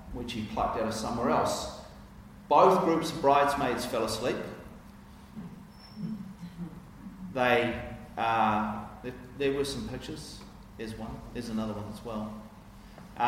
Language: English